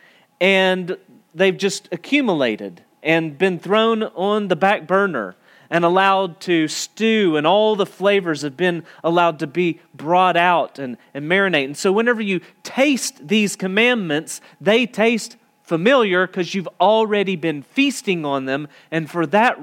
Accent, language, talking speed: American, English, 150 wpm